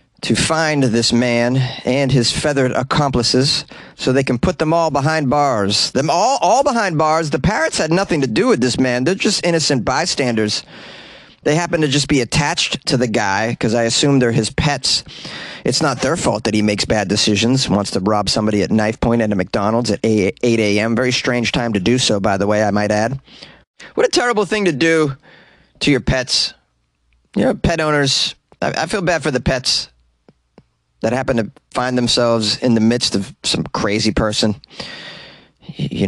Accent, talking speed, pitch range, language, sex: American, 195 wpm, 105-145 Hz, English, male